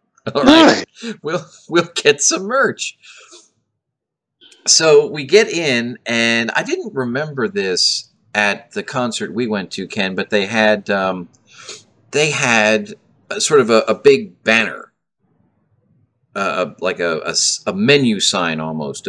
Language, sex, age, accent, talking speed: English, male, 40-59, American, 140 wpm